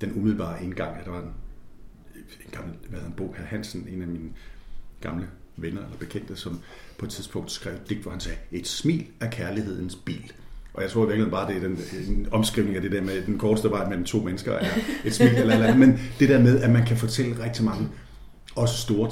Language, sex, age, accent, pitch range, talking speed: Danish, male, 50-69, native, 90-115 Hz, 230 wpm